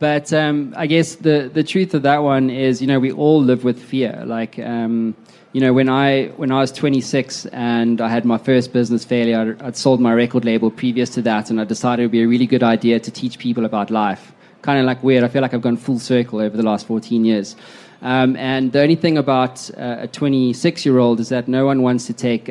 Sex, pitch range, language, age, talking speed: male, 115-135 Hz, English, 20-39, 235 wpm